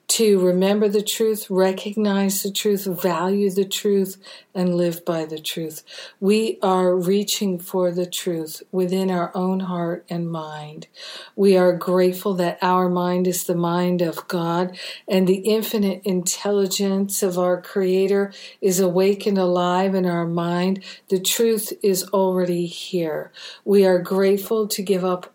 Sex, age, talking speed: female, 50-69, 145 wpm